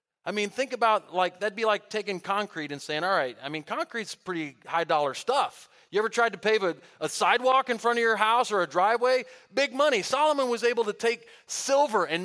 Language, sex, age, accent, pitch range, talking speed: English, male, 40-59, American, 150-210 Hz, 225 wpm